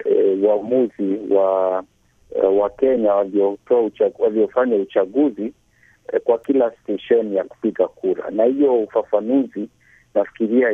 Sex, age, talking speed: male, 50-69, 125 wpm